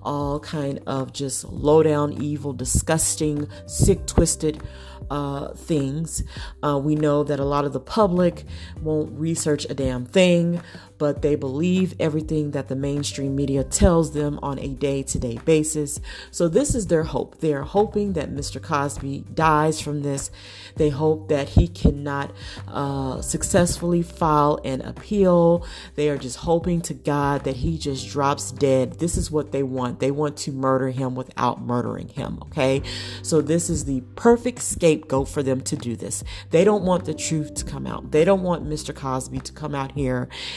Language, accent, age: English, American, 40-59